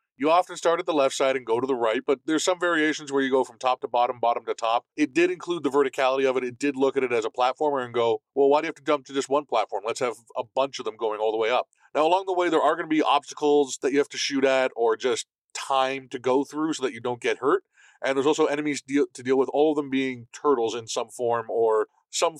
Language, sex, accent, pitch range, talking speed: English, male, American, 125-155 Hz, 295 wpm